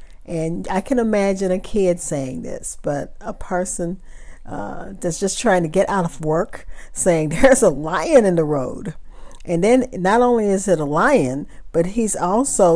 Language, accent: English, American